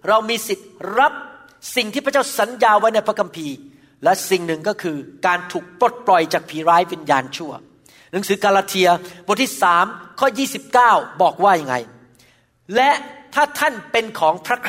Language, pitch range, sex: Thai, 175-220 Hz, male